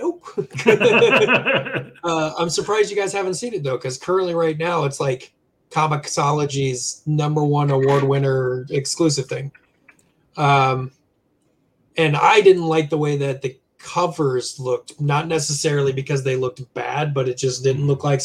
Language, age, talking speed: English, 20-39, 150 wpm